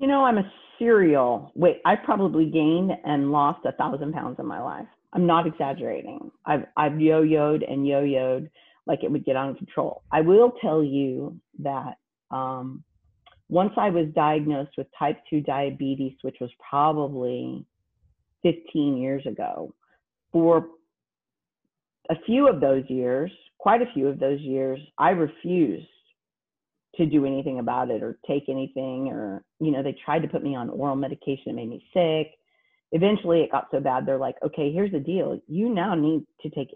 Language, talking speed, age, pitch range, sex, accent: English, 175 wpm, 40-59, 135-170 Hz, female, American